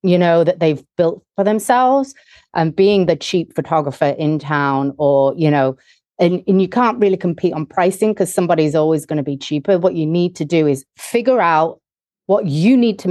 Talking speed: 205 wpm